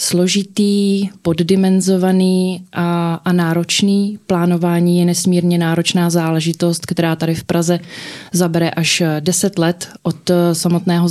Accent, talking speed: native, 110 wpm